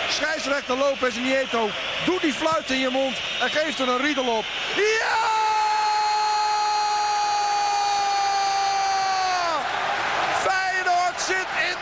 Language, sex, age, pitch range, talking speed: Dutch, male, 50-69, 280-360 Hz, 95 wpm